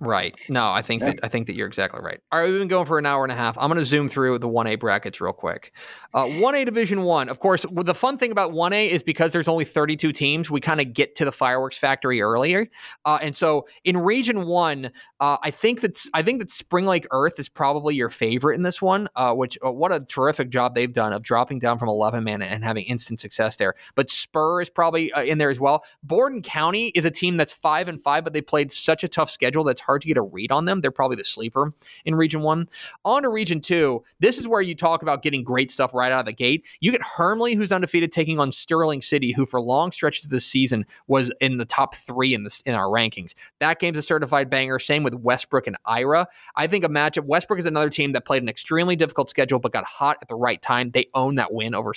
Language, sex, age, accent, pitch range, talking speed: English, male, 20-39, American, 125-170 Hz, 255 wpm